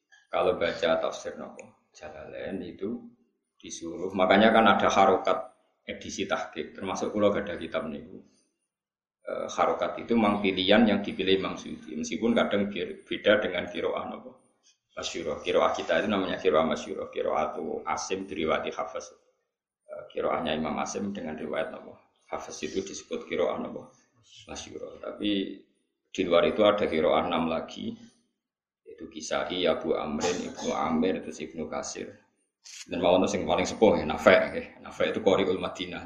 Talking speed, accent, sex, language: 150 wpm, native, male, Indonesian